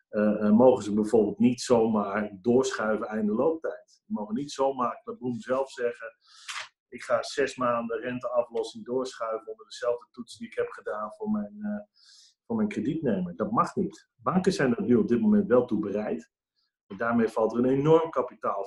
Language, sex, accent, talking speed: Dutch, male, Dutch, 175 wpm